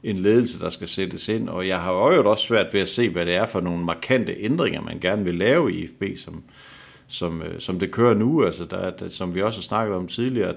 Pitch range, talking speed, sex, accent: 90-120 Hz, 250 wpm, male, native